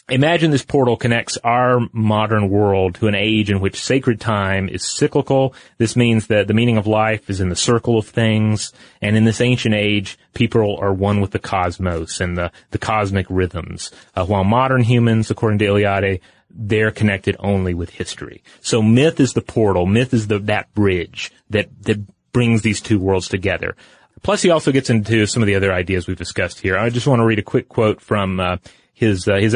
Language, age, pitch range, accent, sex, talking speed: English, 30-49, 100-120 Hz, American, male, 205 wpm